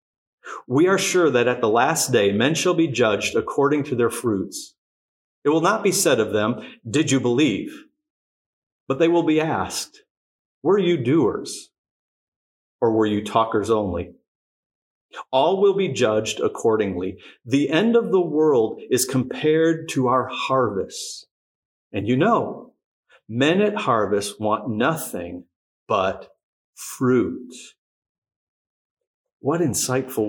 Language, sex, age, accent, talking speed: English, male, 40-59, American, 130 wpm